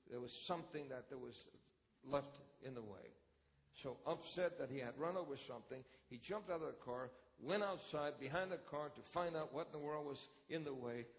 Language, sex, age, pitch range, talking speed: English, male, 60-79, 105-145 Hz, 215 wpm